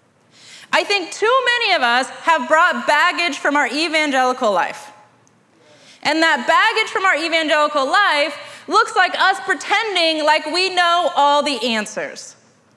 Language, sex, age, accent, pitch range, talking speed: English, female, 30-49, American, 300-390 Hz, 140 wpm